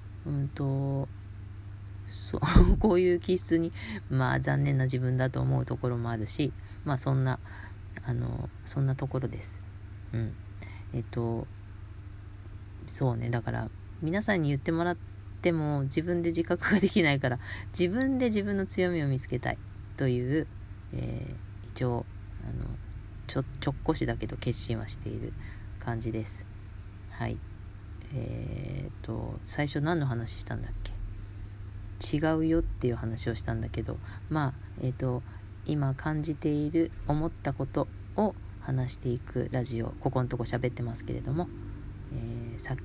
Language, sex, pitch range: Japanese, female, 100-135 Hz